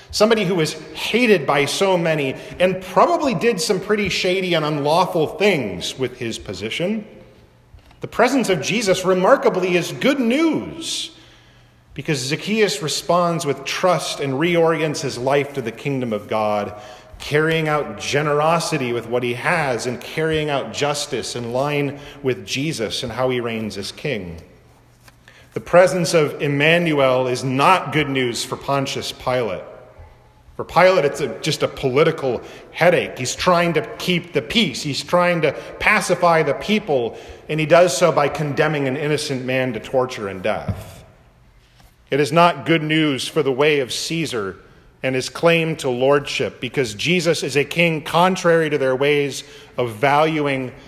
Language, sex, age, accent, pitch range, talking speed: English, male, 40-59, American, 130-175 Hz, 155 wpm